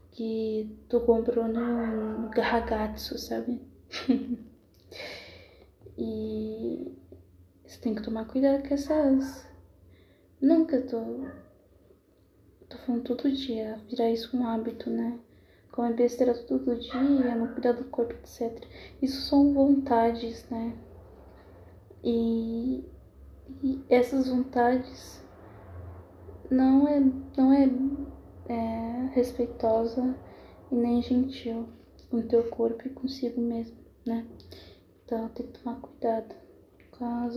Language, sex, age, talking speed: Portuguese, female, 20-39, 110 wpm